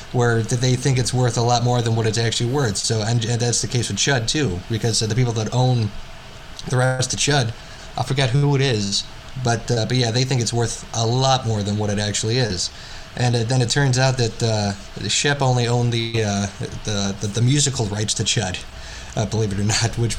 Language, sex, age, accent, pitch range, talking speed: English, male, 20-39, American, 110-130 Hz, 235 wpm